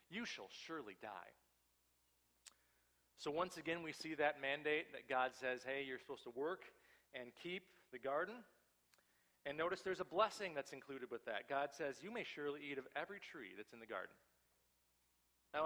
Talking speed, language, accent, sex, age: 175 wpm, English, American, male, 40-59